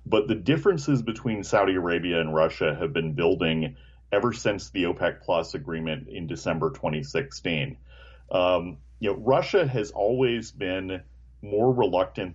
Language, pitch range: English, 75-110 Hz